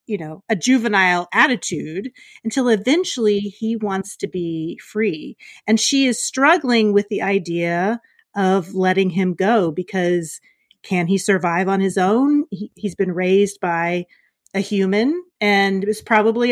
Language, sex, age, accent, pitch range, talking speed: English, female, 40-59, American, 195-250 Hz, 145 wpm